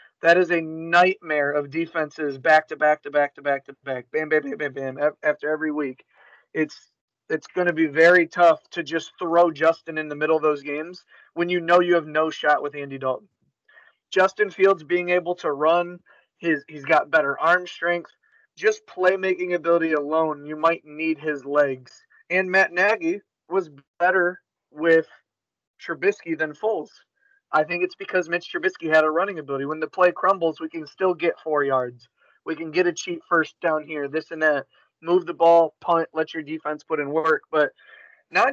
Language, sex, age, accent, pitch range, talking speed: English, male, 30-49, American, 150-175 Hz, 175 wpm